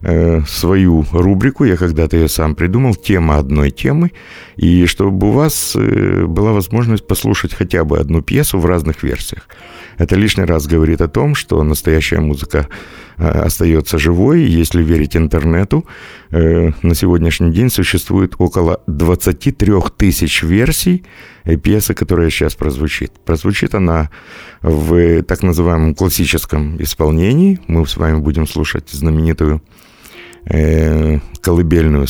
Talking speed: 120 wpm